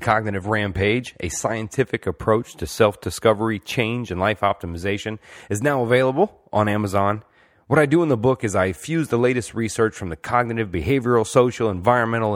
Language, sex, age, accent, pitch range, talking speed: English, male, 30-49, American, 100-125 Hz, 165 wpm